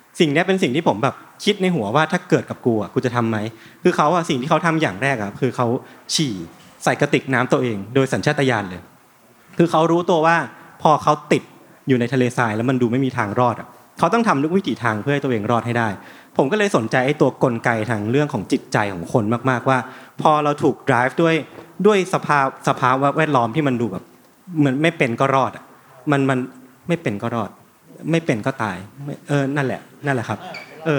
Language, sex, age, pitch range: Thai, male, 20-39, 120-155 Hz